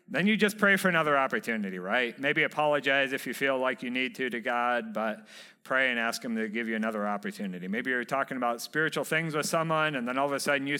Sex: male